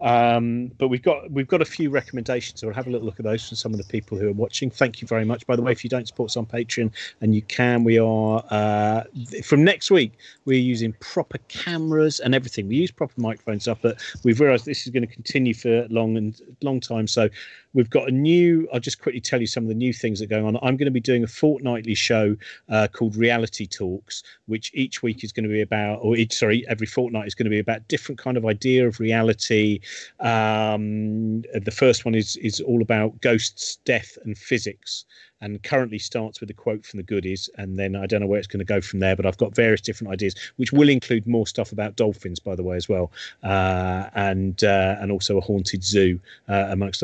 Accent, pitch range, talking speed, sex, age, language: British, 105-120 Hz, 240 wpm, male, 40-59, English